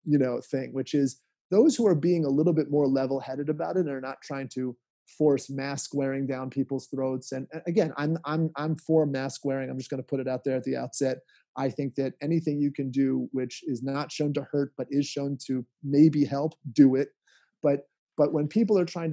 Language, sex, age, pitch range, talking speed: English, male, 30-49, 135-165 Hz, 230 wpm